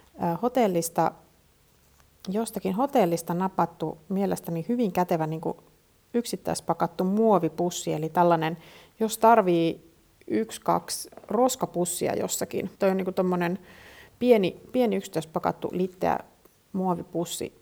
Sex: female